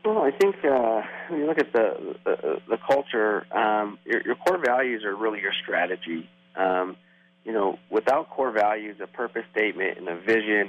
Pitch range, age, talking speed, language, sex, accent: 100-115 Hz, 40-59, 185 wpm, English, male, American